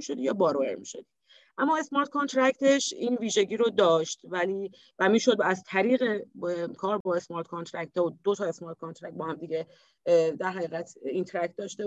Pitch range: 180-255 Hz